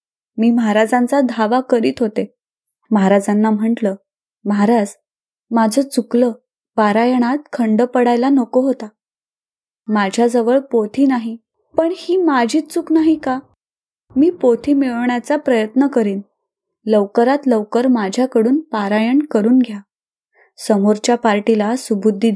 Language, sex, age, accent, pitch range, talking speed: Marathi, female, 20-39, native, 220-270 Hz, 100 wpm